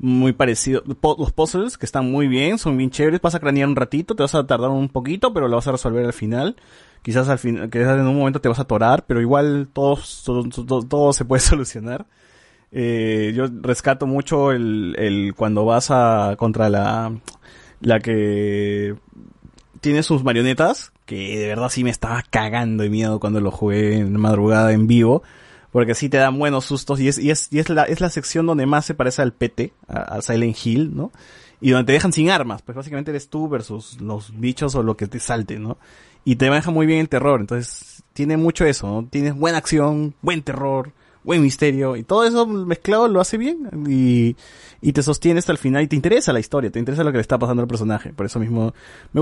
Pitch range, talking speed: 115-150 Hz, 215 wpm